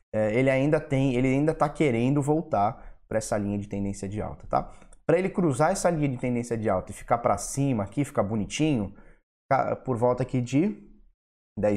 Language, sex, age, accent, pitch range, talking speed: Portuguese, male, 20-39, Brazilian, 105-140 Hz, 180 wpm